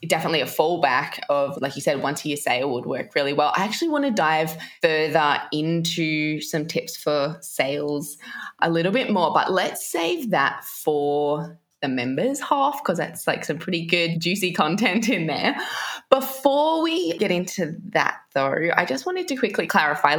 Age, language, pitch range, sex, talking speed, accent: 20-39, English, 150-210 Hz, female, 180 wpm, Australian